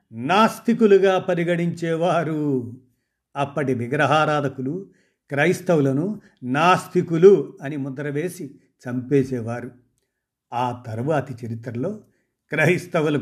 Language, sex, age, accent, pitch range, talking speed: Telugu, male, 50-69, native, 125-170 Hz, 60 wpm